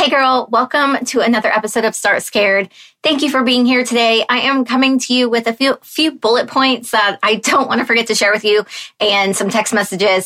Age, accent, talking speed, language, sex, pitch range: 20-39, American, 235 wpm, English, female, 190-230 Hz